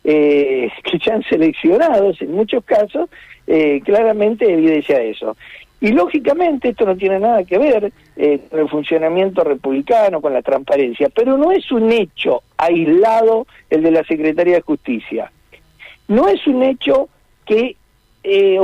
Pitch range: 170-260 Hz